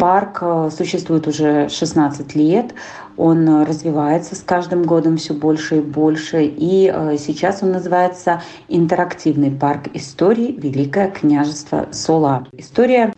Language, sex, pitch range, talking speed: Russian, female, 155-185 Hz, 115 wpm